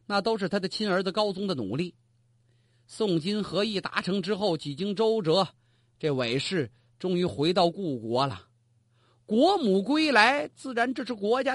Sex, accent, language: male, native, Chinese